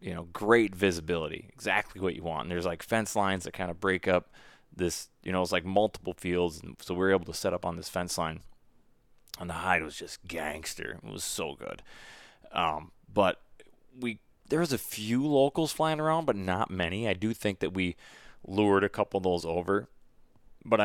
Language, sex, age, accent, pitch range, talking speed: English, male, 20-39, American, 85-105 Hz, 205 wpm